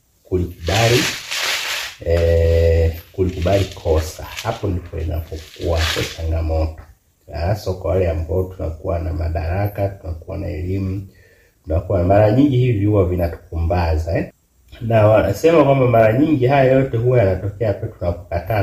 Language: Swahili